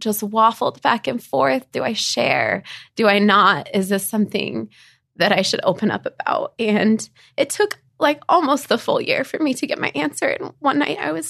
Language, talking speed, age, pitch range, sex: English, 205 wpm, 20-39, 205-275 Hz, female